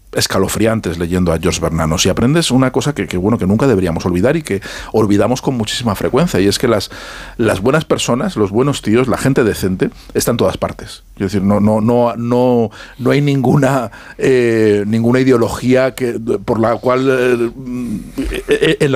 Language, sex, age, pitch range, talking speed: Spanish, male, 50-69, 95-125 Hz, 180 wpm